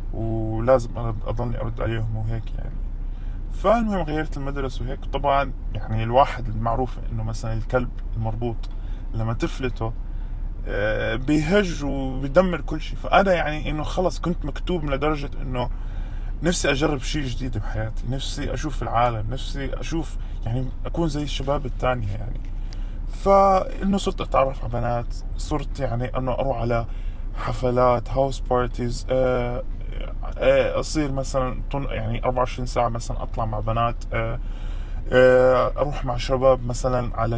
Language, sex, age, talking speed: Arabic, male, 20-39, 125 wpm